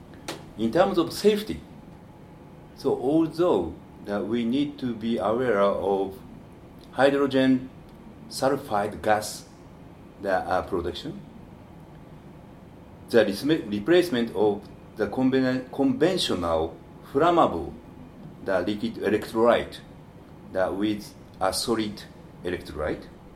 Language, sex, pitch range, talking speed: French, male, 100-140 Hz, 85 wpm